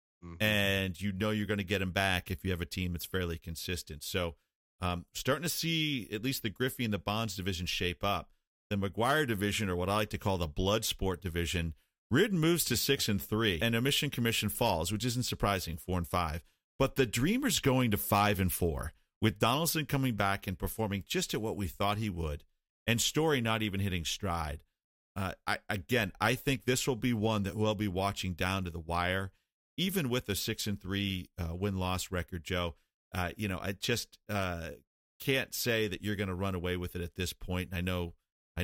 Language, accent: English, American